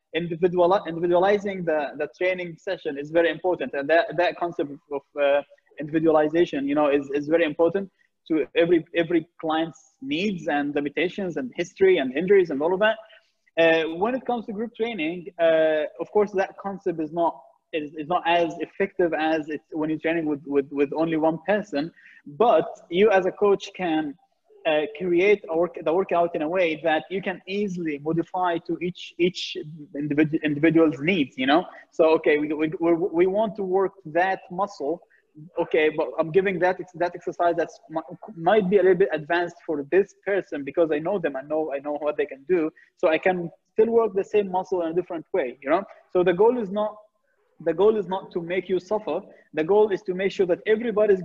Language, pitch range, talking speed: English, 160-195 Hz, 200 wpm